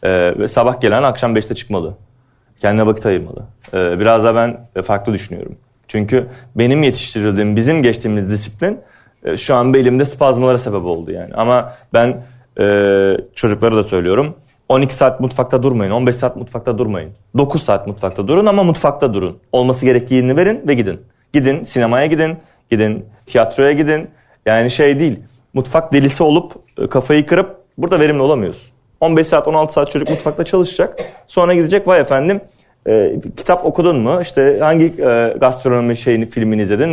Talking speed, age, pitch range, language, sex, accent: 155 wpm, 30-49, 110-150 Hz, Turkish, male, native